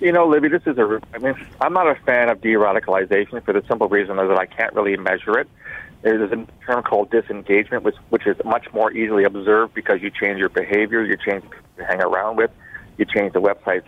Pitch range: 110-160 Hz